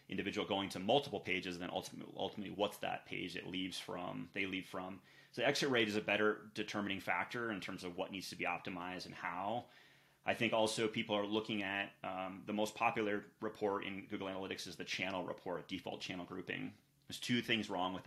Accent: American